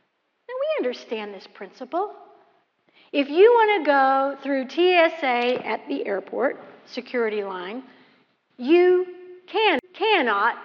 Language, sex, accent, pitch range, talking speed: English, female, American, 235-360 Hz, 115 wpm